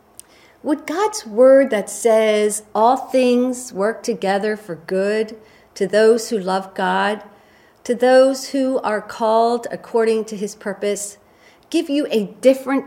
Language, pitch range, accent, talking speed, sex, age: English, 210-265 Hz, American, 135 wpm, female, 50-69